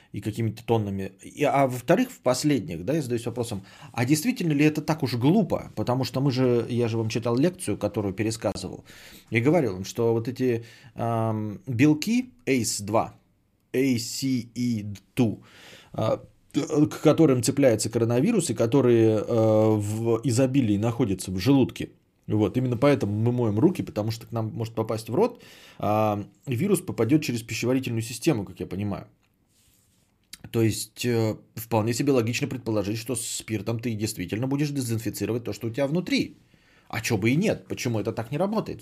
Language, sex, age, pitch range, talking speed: Bulgarian, male, 20-39, 105-140 Hz, 165 wpm